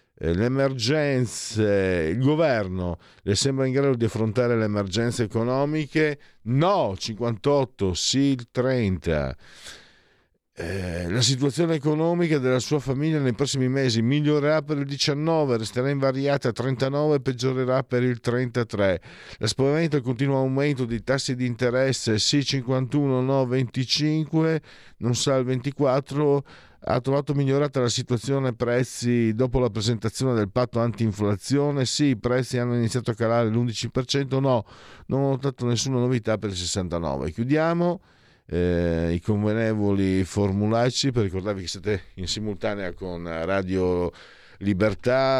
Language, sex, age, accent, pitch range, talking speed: Italian, male, 50-69, native, 95-130 Hz, 130 wpm